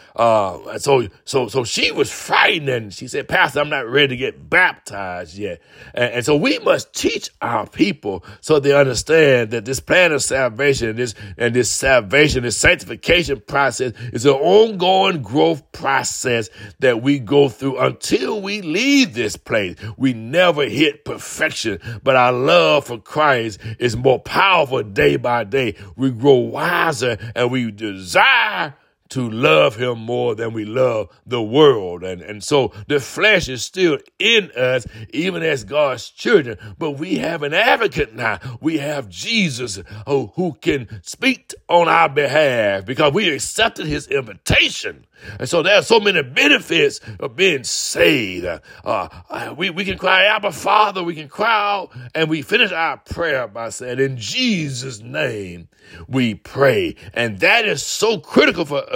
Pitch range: 115-160 Hz